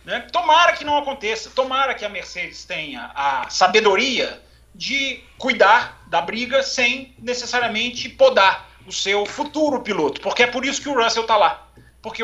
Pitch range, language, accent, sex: 205-270 Hz, Portuguese, Brazilian, male